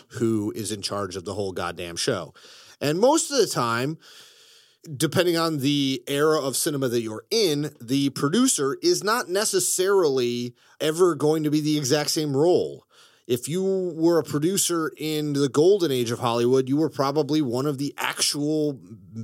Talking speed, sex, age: 170 wpm, male, 30-49